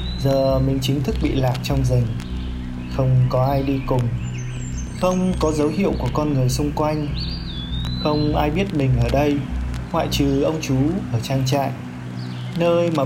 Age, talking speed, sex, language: 20-39, 175 wpm, male, Vietnamese